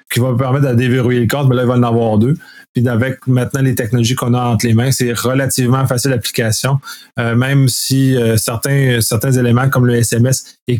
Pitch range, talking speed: 120-140 Hz, 220 wpm